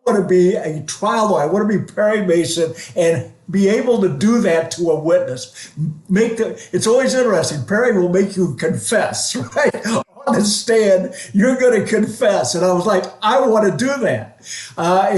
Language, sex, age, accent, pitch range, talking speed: English, male, 60-79, American, 165-205 Hz, 200 wpm